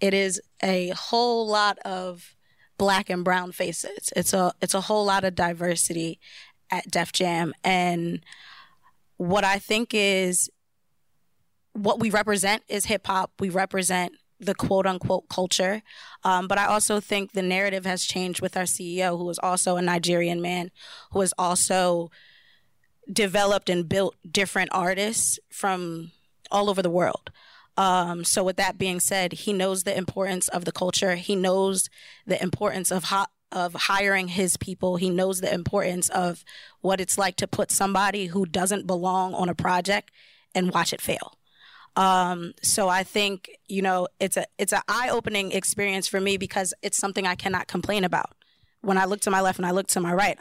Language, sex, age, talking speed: English, female, 20-39, 175 wpm